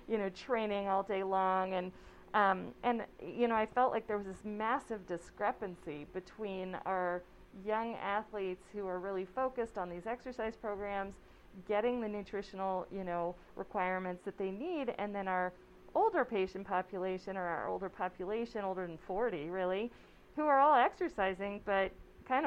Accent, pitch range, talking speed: American, 185-220 Hz, 160 wpm